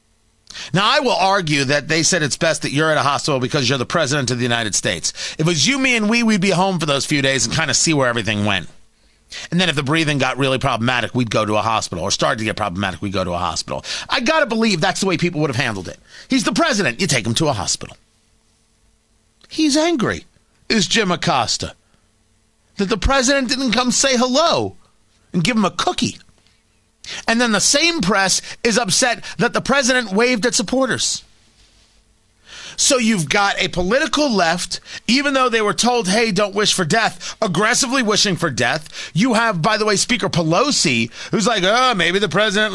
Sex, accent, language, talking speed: male, American, English, 210 wpm